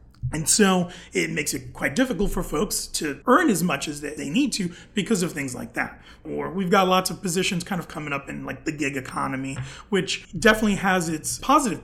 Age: 30-49